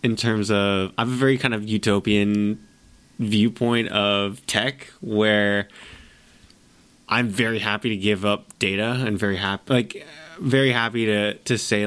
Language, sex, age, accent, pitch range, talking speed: English, male, 20-39, American, 105-130 Hz, 145 wpm